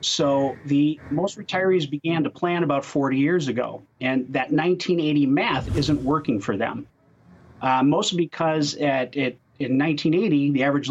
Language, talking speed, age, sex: English, 155 wpm, 30-49, male